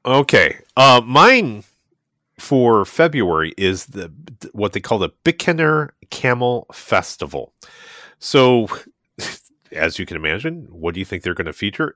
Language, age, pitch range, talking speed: English, 30-49, 95-145 Hz, 135 wpm